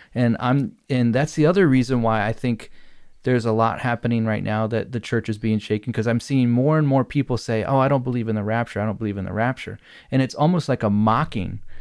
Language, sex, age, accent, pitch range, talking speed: English, male, 30-49, American, 110-135 Hz, 250 wpm